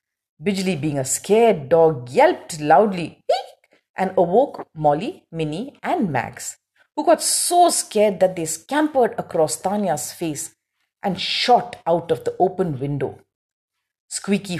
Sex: female